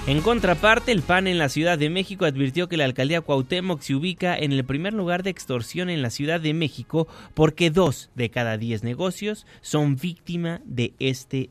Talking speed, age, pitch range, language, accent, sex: 195 wpm, 30-49, 120-160 Hz, Spanish, Mexican, male